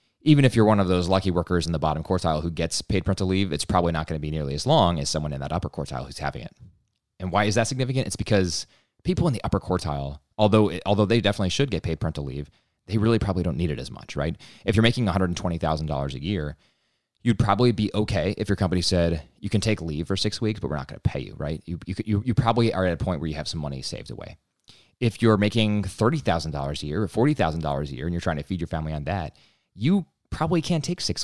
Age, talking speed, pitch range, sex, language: 20-39, 255 wpm, 80-105 Hz, male, English